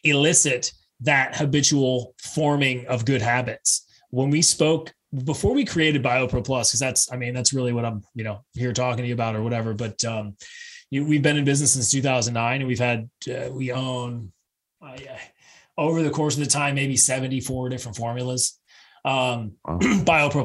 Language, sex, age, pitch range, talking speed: English, male, 20-39, 125-155 Hz, 180 wpm